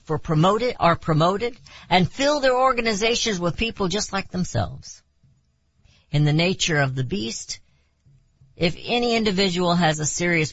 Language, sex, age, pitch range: English, female, 60-79, 110-165 Hz